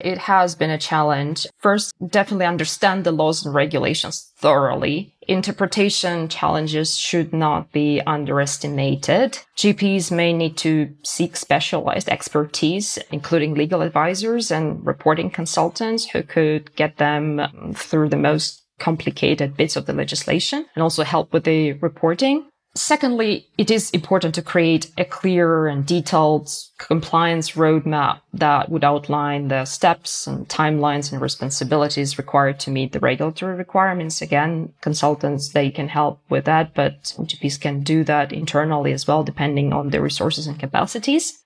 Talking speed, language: 140 wpm, English